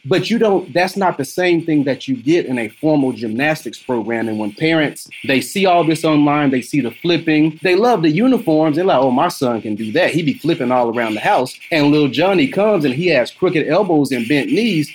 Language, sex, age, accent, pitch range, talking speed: English, male, 30-49, American, 125-165 Hz, 235 wpm